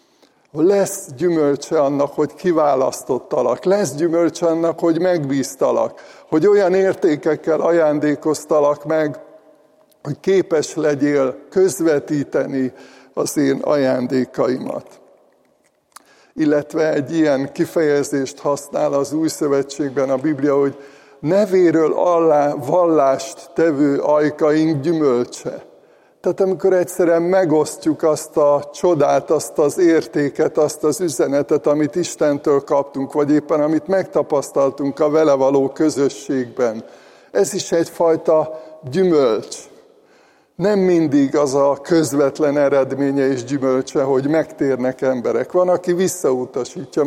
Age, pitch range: 60-79, 140-170 Hz